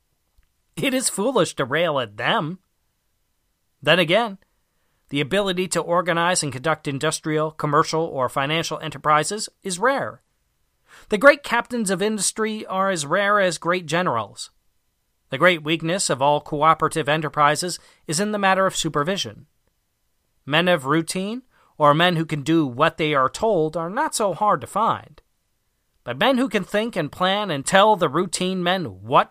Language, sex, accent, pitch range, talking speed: English, male, American, 145-195 Hz, 160 wpm